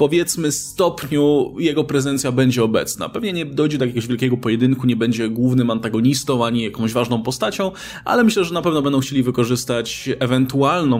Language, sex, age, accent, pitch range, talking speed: Polish, male, 20-39, native, 125-170 Hz, 165 wpm